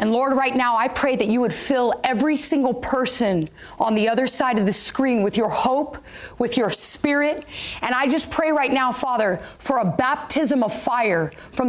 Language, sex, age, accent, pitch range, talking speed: English, female, 30-49, American, 255-330 Hz, 200 wpm